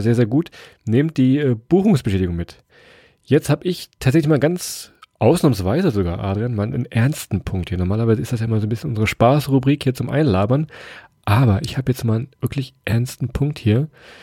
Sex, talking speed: male, 190 wpm